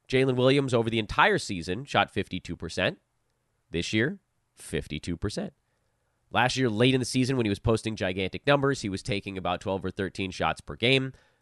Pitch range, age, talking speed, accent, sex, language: 95-130 Hz, 30-49, 175 wpm, American, male, English